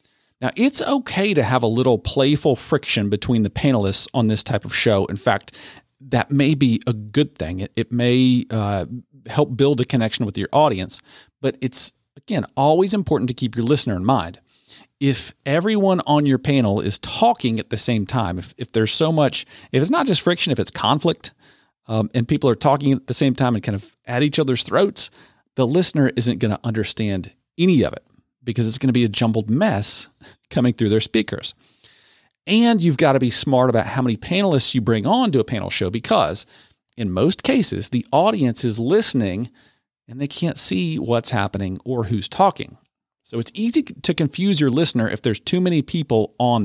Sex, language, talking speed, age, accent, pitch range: male, English, 200 wpm, 40-59, American, 110-145 Hz